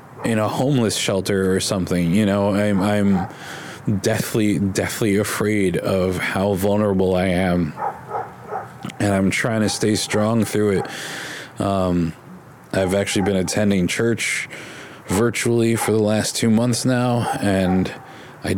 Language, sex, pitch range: English, male, 90-105 Hz